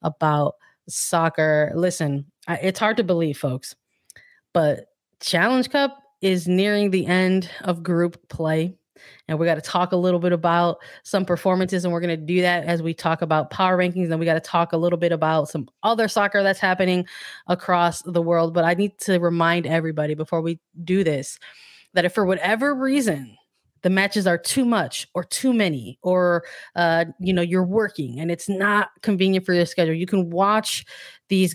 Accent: American